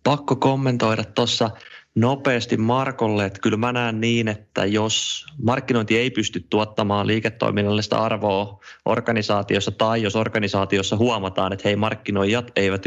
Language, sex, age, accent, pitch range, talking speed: Finnish, male, 20-39, native, 95-115 Hz, 125 wpm